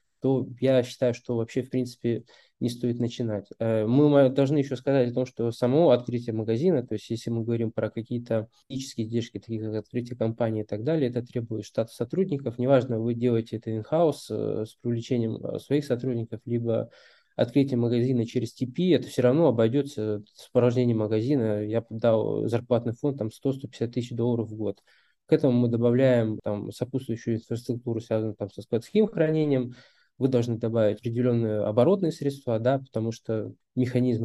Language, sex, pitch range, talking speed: Russian, male, 115-130 Hz, 165 wpm